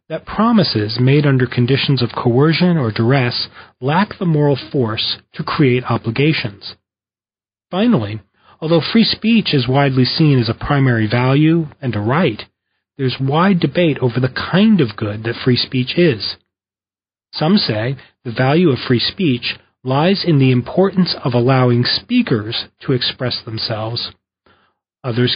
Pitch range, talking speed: 120-170 Hz, 145 wpm